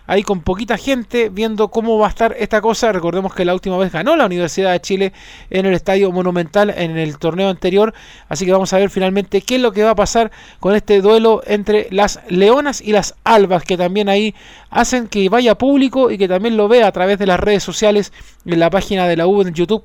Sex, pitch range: male, 190-225 Hz